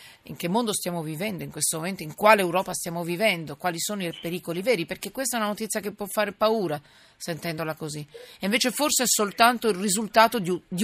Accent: native